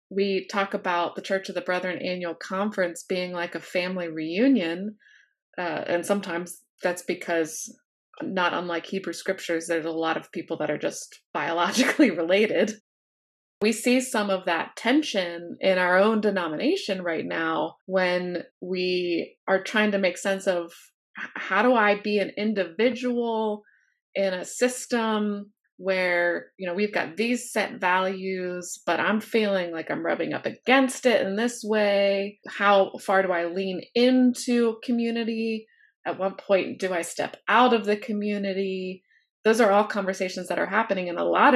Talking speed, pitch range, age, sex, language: 160 wpm, 180-220 Hz, 20-39, female, English